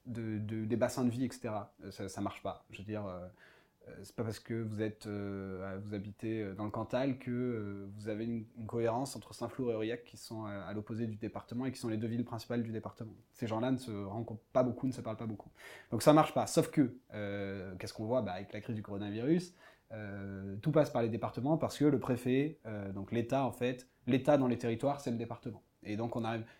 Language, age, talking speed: French, 20-39, 250 wpm